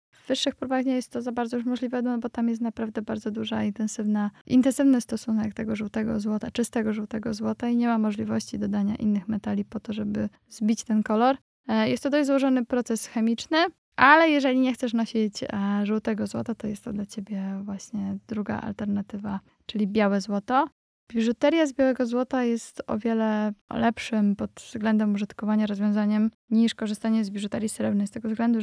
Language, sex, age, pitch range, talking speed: Polish, female, 20-39, 205-235 Hz, 175 wpm